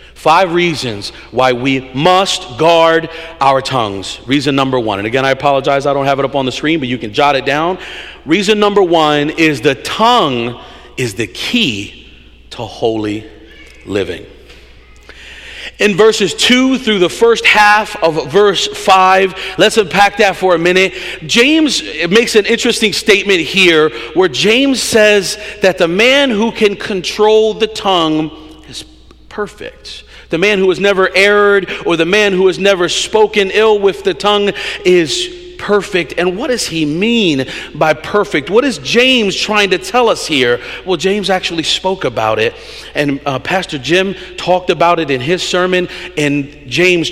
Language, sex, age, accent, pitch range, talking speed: English, male, 40-59, American, 145-210 Hz, 165 wpm